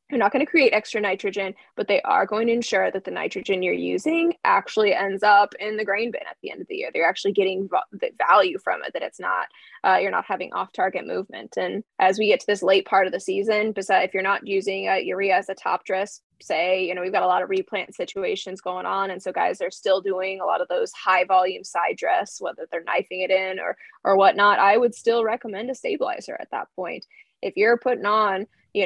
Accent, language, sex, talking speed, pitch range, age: American, English, female, 245 wpm, 190-245 Hz, 20-39